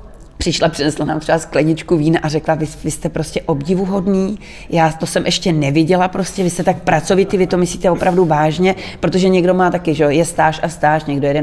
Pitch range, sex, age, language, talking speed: 155-175 Hz, female, 30-49, English, 205 wpm